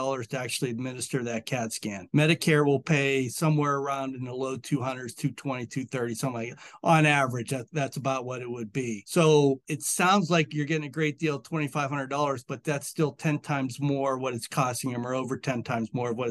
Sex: male